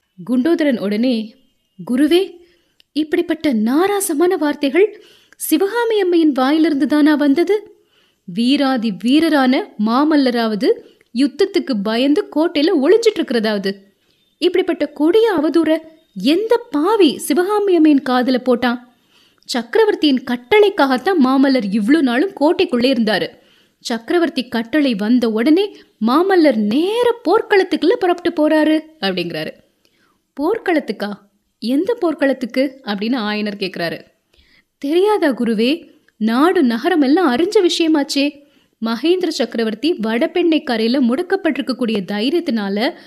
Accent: native